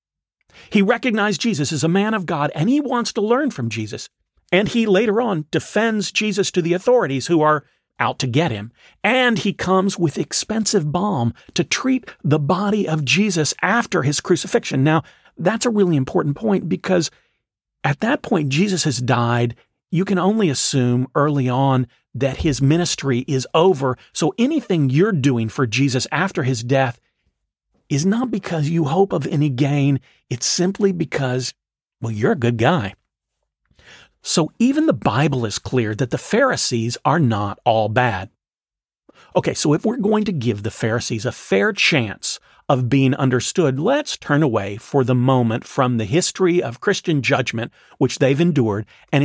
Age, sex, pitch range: 40-59, male, 130-195 Hz